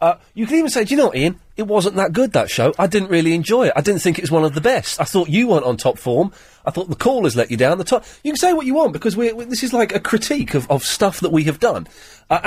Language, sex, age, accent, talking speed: English, male, 30-49, British, 325 wpm